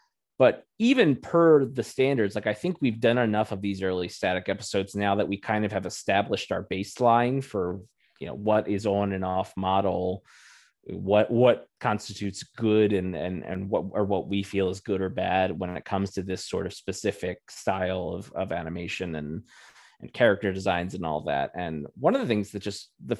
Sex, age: male, 20-39